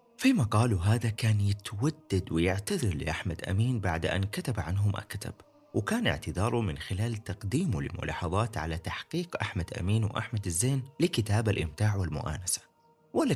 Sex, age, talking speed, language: male, 30-49, 130 wpm, Arabic